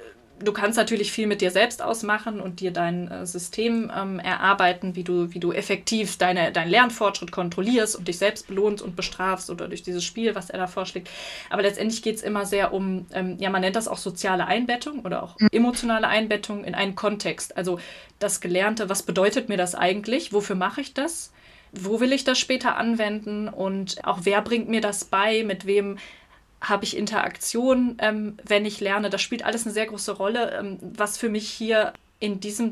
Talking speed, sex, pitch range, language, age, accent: 195 wpm, female, 195-225 Hz, German, 20-39, German